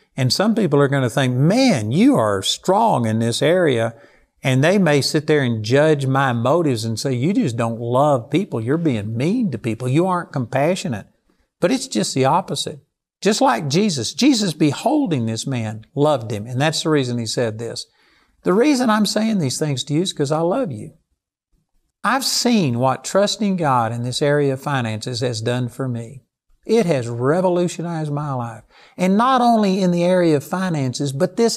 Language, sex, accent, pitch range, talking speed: English, male, American, 130-190 Hz, 190 wpm